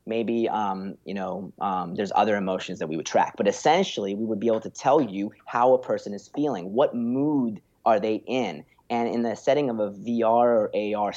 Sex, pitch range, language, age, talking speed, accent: male, 100-125 Hz, English, 30-49, 215 wpm, American